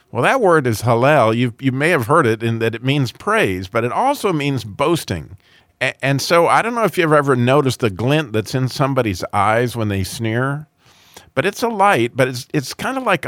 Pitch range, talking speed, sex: 110-155 Hz, 220 wpm, male